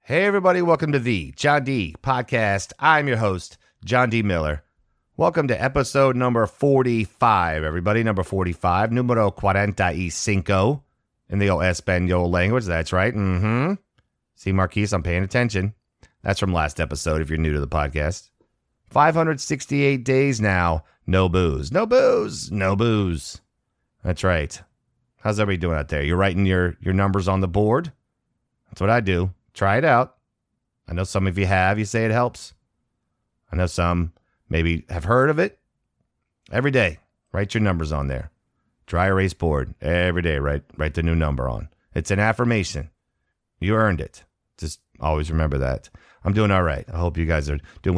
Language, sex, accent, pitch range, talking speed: English, male, American, 85-120 Hz, 170 wpm